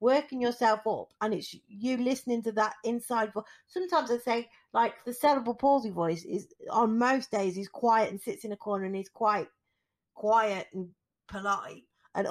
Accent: British